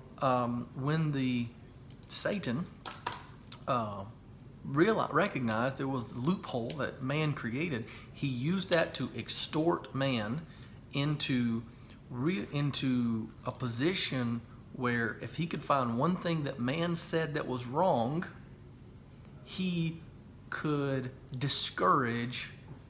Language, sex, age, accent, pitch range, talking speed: English, male, 40-59, American, 120-140 Hz, 105 wpm